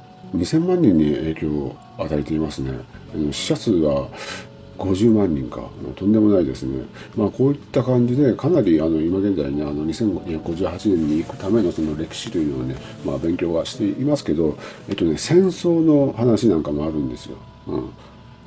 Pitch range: 75-110 Hz